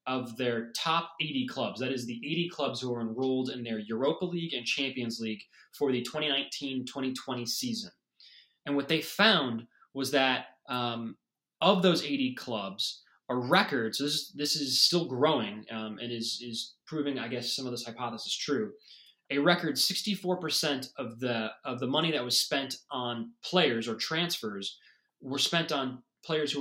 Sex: male